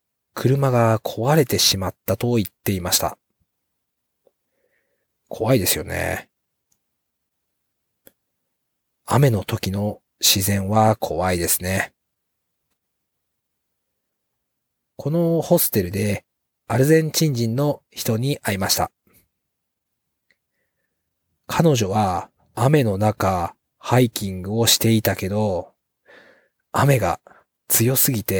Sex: male